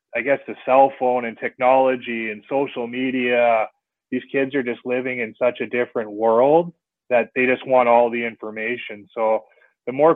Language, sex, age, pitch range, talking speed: English, male, 20-39, 115-130 Hz, 175 wpm